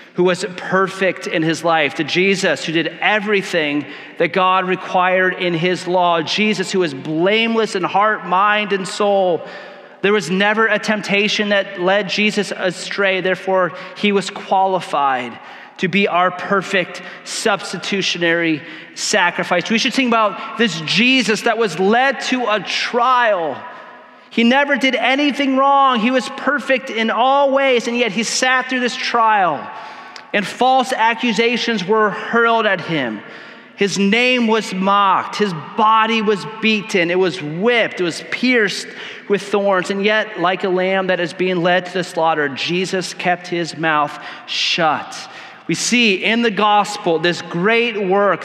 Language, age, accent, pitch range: English, 30-49, American, 185-225 Hz